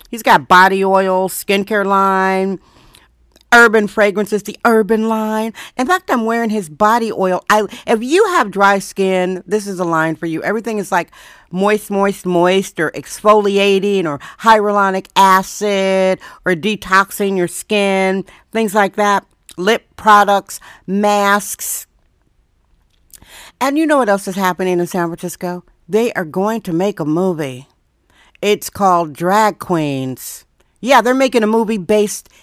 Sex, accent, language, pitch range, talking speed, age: female, American, English, 190-225 Hz, 140 wpm, 50-69